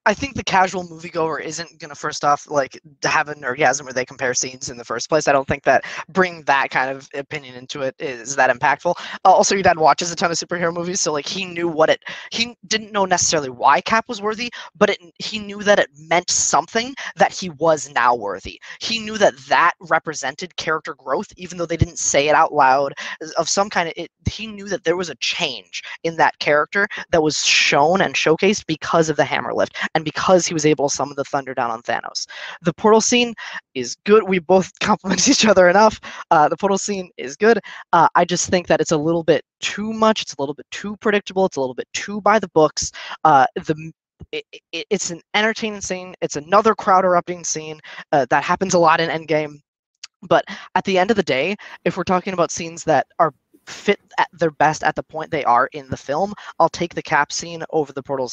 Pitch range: 150-195 Hz